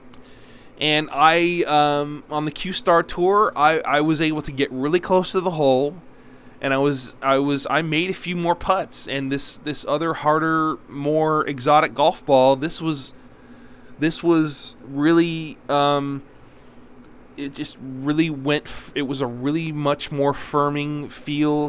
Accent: American